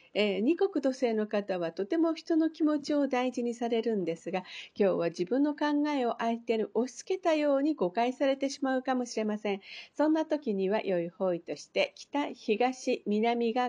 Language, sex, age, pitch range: Japanese, female, 50-69, 205-280 Hz